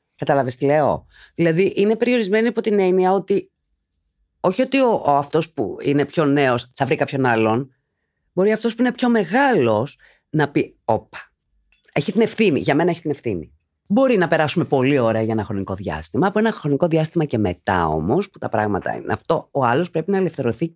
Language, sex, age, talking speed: Greek, female, 30-49, 190 wpm